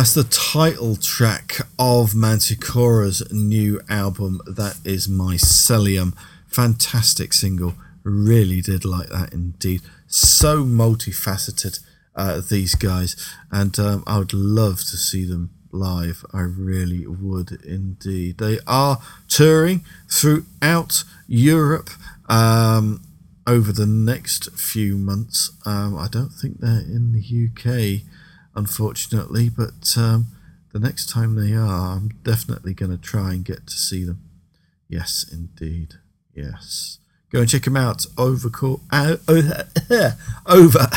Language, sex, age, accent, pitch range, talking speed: English, male, 40-59, British, 95-120 Hz, 120 wpm